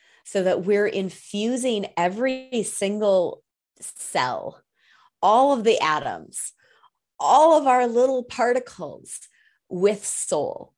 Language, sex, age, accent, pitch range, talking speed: English, female, 30-49, American, 170-225 Hz, 100 wpm